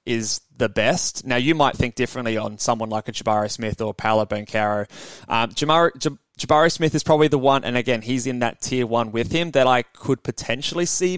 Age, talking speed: 20-39, 210 wpm